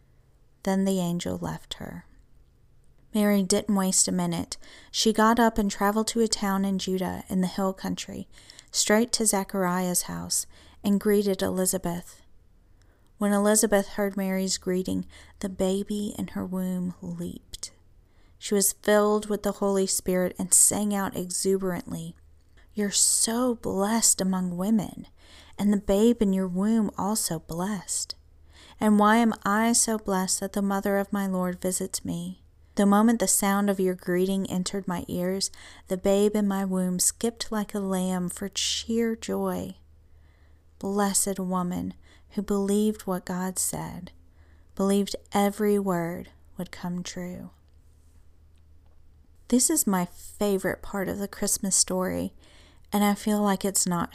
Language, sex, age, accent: English, female, 40-59, American